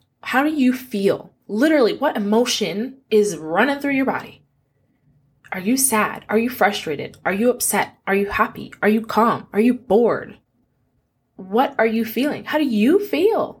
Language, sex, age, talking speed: English, female, 20-39, 170 wpm